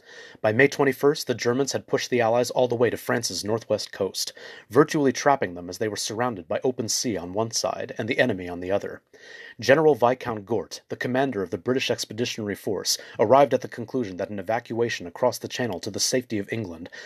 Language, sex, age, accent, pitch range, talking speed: English, male, 30-49, American, 105-130 Hz, 210 wpm